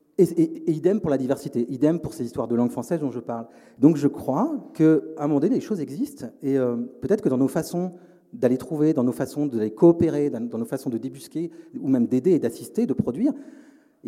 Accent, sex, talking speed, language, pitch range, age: French, male, 235 wpm, French, 125-190 Hz, 40-59